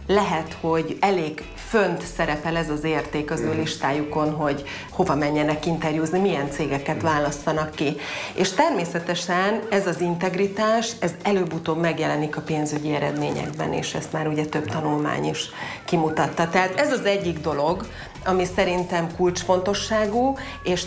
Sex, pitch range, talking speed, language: female, 155-200 Hz, 135 wpm, Hungarian